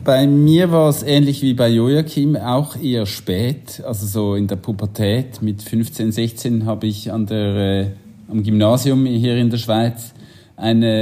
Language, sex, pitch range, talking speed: German, male, 110-125 Hz, 170 wpm